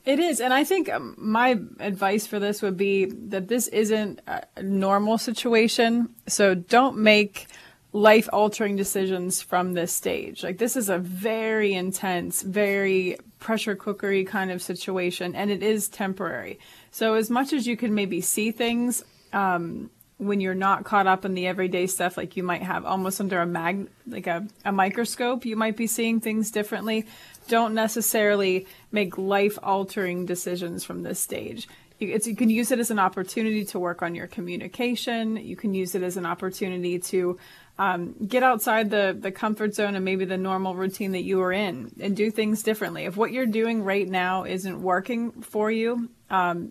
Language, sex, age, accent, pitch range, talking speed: English, female, 30-49, American, 185-220 Hz, 180 wpm